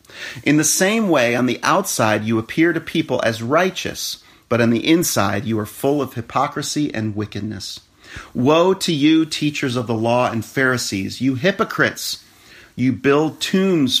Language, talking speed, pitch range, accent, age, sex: English, 165 wpm, 110-145 Hz, American, 40-59, male